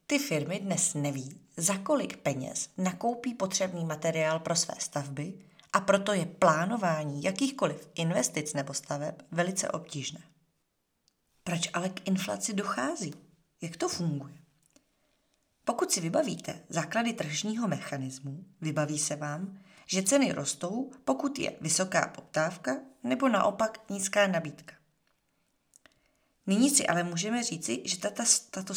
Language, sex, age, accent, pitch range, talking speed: Czech, female, 30-49, native, 155-220 Hz, 125 wpm